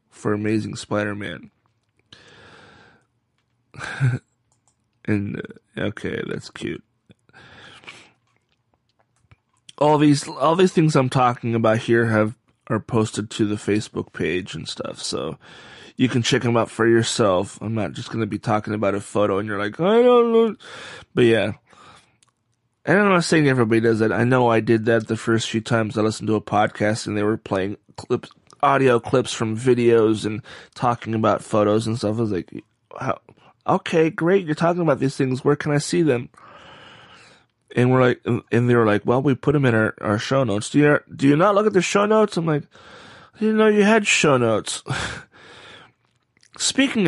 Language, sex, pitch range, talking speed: Italian, male, 110-160 Hz, 180 wpm